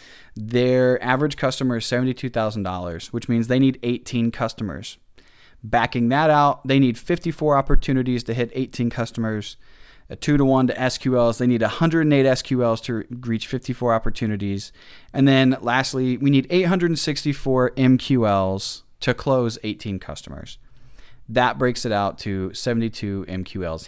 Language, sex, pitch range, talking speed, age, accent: English, male, 110-140 Hz, 130 wpm, 20-39, American